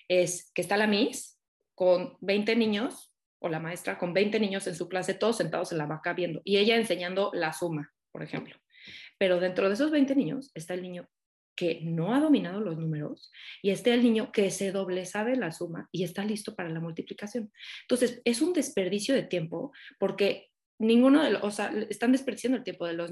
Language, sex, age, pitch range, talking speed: Spanish, female, 20-39, 180-220 Hz, 205 wpm